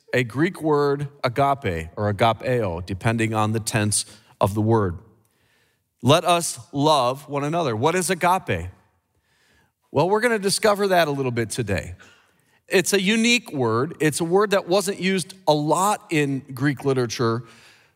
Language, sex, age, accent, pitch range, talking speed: English, male, 40-59, American, 125-175 Hz, 155 wpm